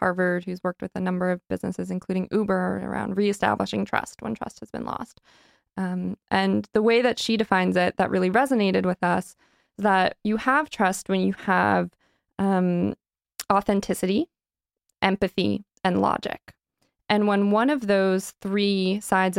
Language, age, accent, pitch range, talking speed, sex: English, 20-39, American, 185-225 Hz, 160 wpm, female